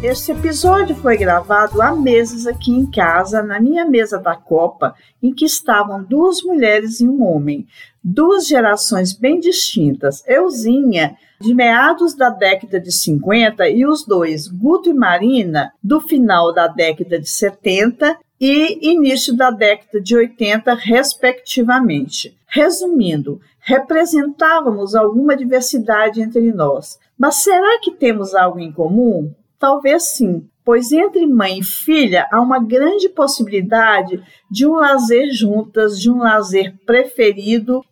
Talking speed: 135 wpm